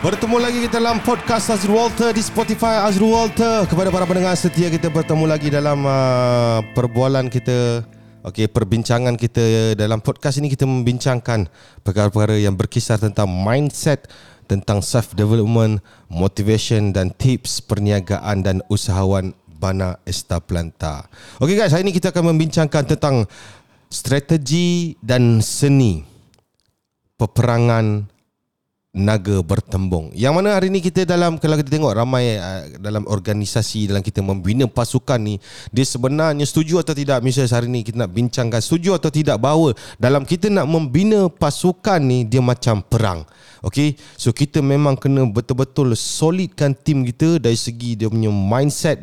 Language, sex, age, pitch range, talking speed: Indonesian, male, 30-49, 110-155 Hz, 140 wpm